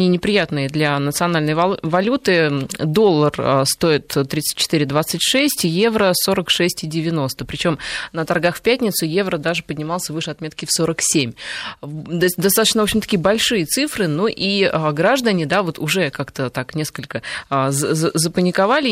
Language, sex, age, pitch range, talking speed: Russian, female, 20-39, 150-195 Hz, 110 wpm